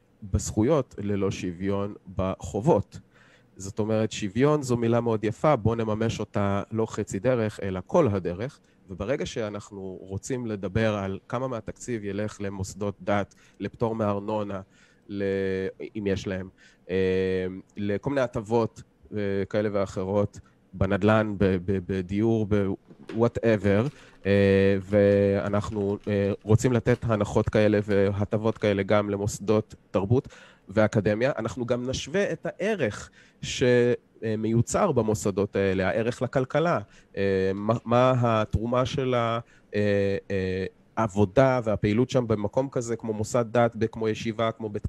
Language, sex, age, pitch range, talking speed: Hebrew, male, 30-49, 100-120 Hz, 120 wpm